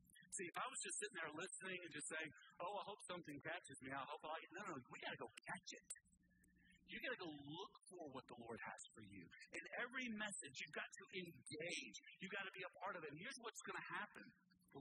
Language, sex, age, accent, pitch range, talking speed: English, male, 50-69, American, 155-215 Hz, 240 wpm